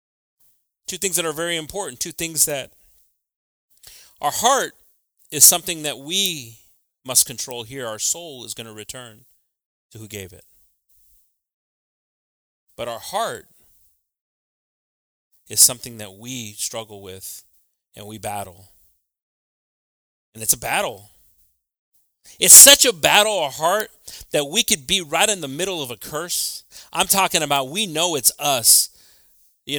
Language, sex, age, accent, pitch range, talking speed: English, male, 30-49, American, 105-165 Hz, 140 wpm